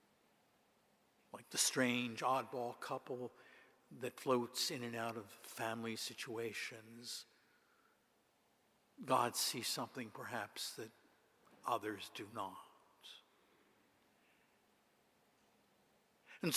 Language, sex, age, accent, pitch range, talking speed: English, male, 60-79, American, 125-165 Hz, 80 wpm